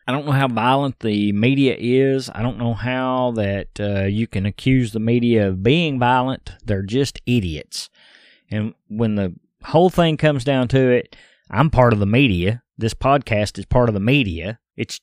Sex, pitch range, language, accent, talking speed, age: male, 110-145 Hz, English, American, 190 wpm, 30-49